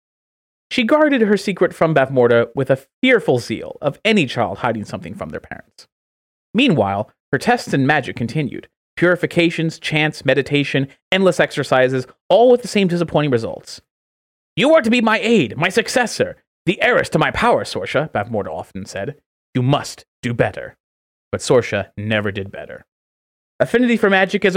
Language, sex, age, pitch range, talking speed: English, male, 30-49, 110-185 Hz, 160 wpm